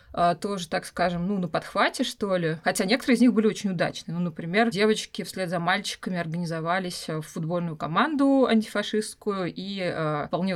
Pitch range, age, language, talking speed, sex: 170-210 Hz, 20-39, Russian, 160 wpm, female